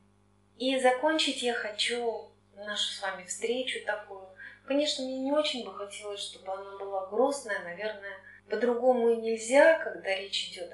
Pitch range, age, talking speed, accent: 170-230 Hz, 30-49, 145 wpm, native